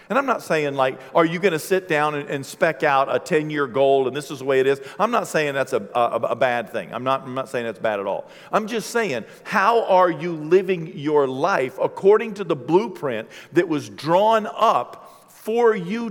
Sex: male